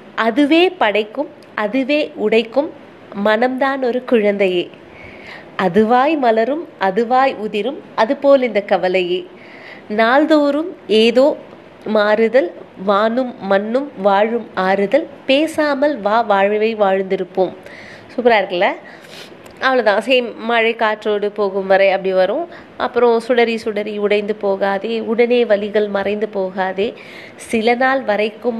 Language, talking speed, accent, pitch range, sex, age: Tamil, 100 wpm, native, 210-260 Hz, female, 20-39